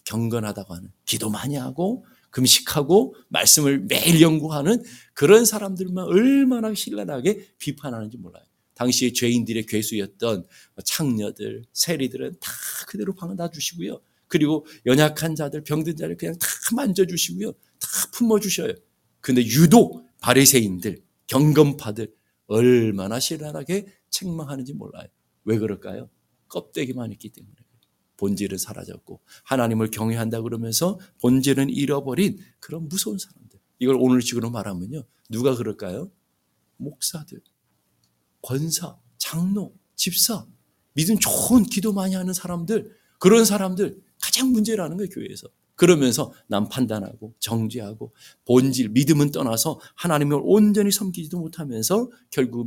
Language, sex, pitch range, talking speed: English, male, 115-185 Hz, 105 wpm